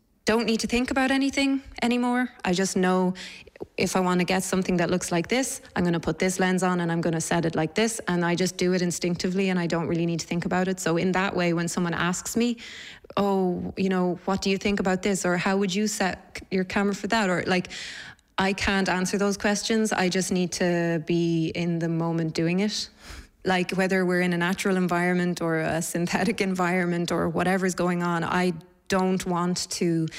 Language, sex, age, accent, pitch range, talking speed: English, female, 20-39, Irish, 170-190 Hz, 215 wpm